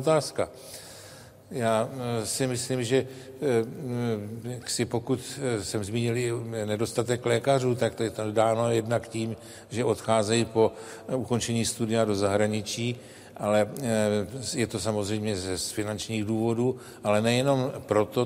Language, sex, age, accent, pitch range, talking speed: Czech, male, 60-79, native, 110-130 Hz, 115 wpm